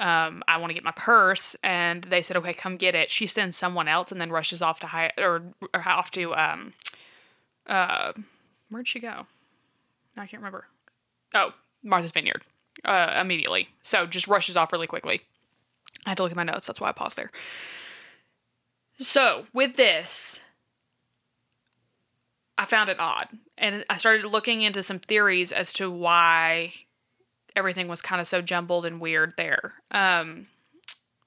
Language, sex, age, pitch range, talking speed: English, female, 20-39, 175-215 Hz, 165 wpm